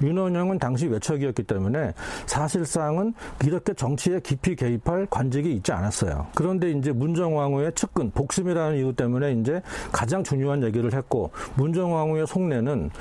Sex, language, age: male, Korean, 40-59